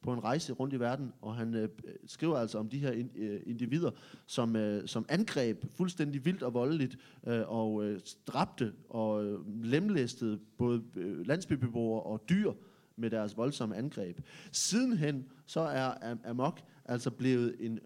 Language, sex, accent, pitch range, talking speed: Danish, male, native, 115-150 Hz, 160 wpm